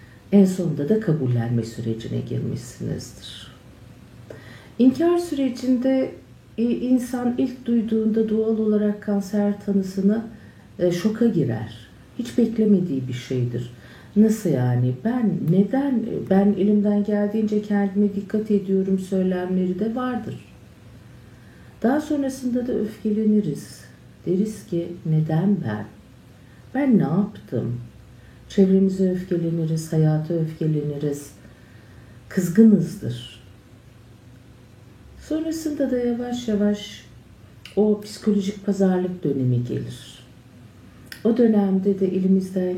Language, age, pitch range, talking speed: Turkish, 50-69, 125-210 Hz, 90 wpm